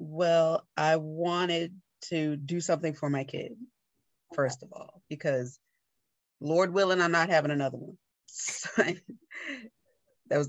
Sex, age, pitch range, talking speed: female, 30-49, 150-175 Hz, 125 wpm